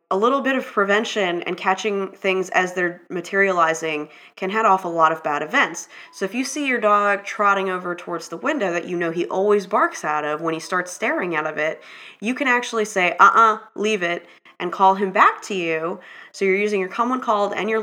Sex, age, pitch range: female, 20-39, 175-225 Hz